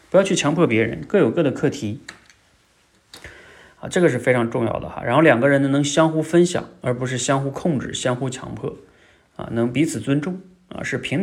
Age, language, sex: 30-49, Chinese, male